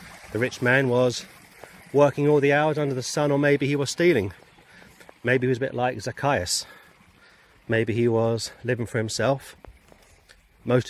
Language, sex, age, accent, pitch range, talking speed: English, male, 30-49, British, 95-125 Hz, 165 wpm